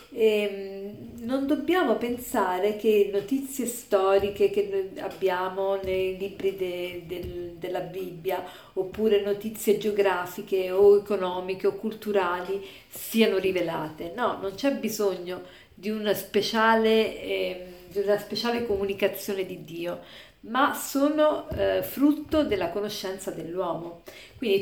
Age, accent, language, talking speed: 50-69, native, Italian, 115 wpm